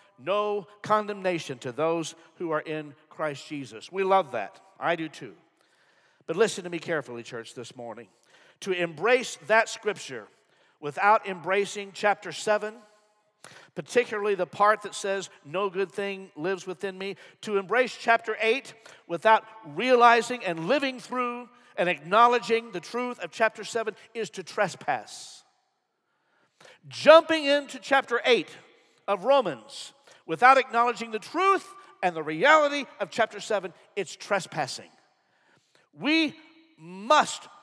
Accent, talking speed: American, 130 wpm